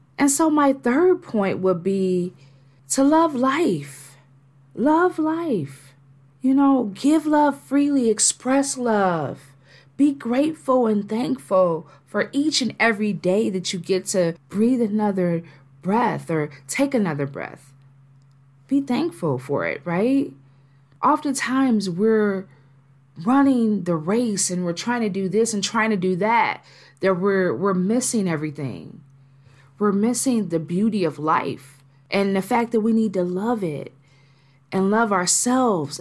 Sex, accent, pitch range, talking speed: female, American, 140-235 Hz, 140 wpm